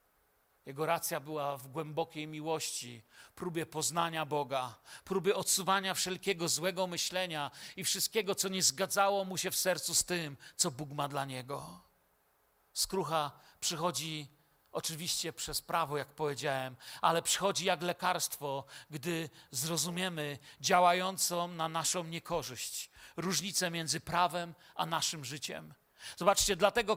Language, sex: Polish, male